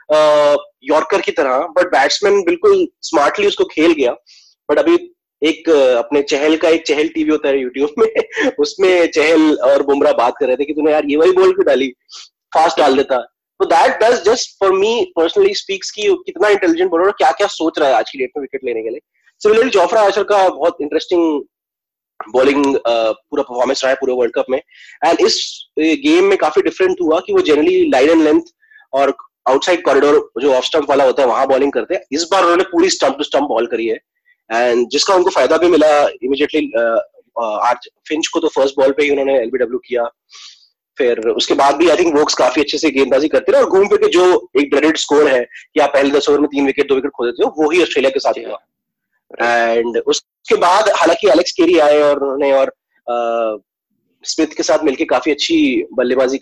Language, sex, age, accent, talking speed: Hindi, male, 20-39, native, 145 wpm